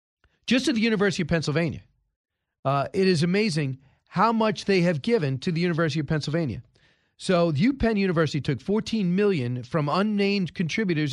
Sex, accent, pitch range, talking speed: male, American, 160-210 Hz, 160 wpm